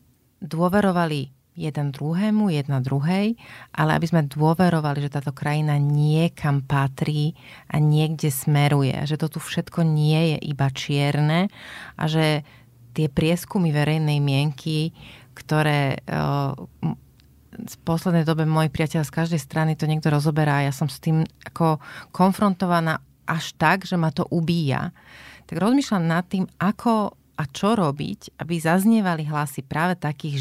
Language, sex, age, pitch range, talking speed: Slovak, female, 30-49, 145-175 Hz, 140 wpm